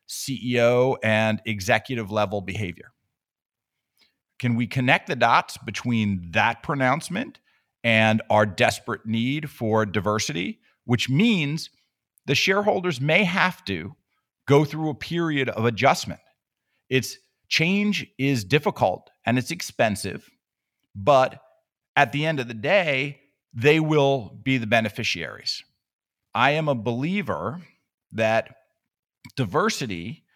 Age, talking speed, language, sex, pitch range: 50-69, 115 wpm, English, male, 115-150 Hz